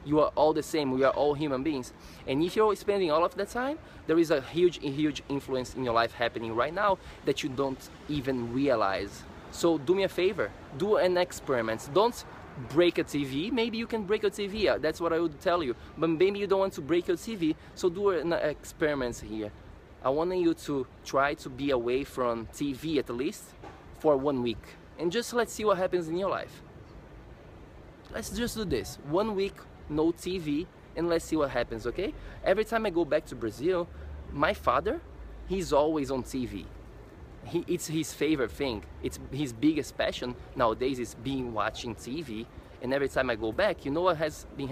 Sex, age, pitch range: male, 20-39, 135-185 Hz